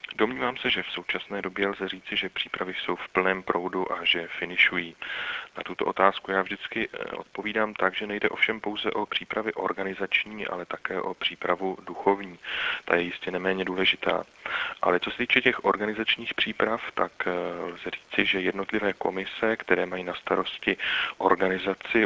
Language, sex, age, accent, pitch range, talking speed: Czech, male, 30-49, native, 90-100 Hz, 160 wpm